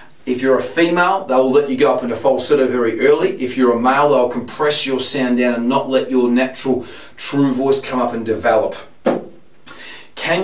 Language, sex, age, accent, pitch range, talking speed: English, male, 40-59, Australian, 125-155 Hz, 195 wpm